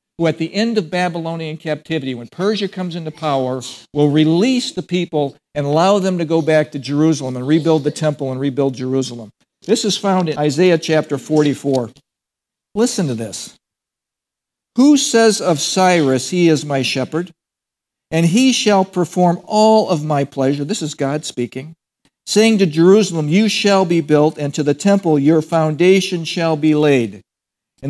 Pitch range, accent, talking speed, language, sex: 145-185 Hz, American, 170 wpm, English, male